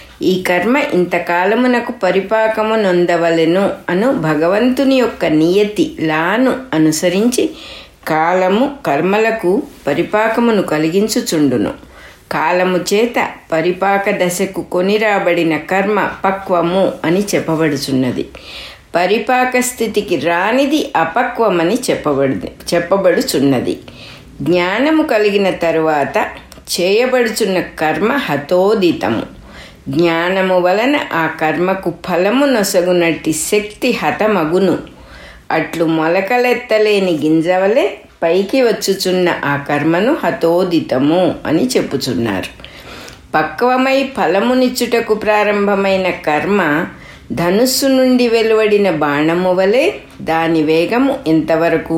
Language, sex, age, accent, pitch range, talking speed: English, female, 60-79, Indian, 165-220 Hz, 75 wpm